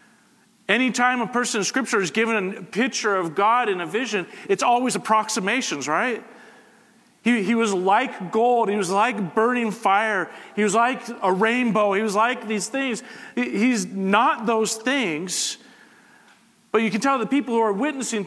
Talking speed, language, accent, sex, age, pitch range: 170 wpm, English, American, male, 40-59, 175-235 Hz